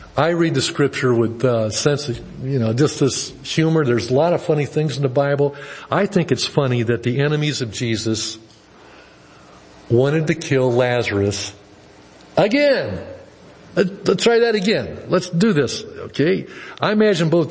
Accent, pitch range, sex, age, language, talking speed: American, 125-165 Hz, male, 60-79, English, 165 wpm